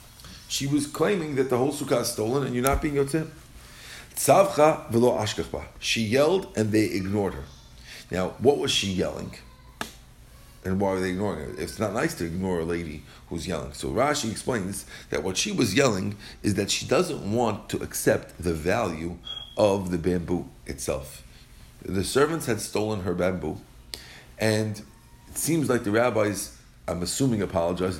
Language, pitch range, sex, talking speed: English, 85-125 Hz, male, 165 wpm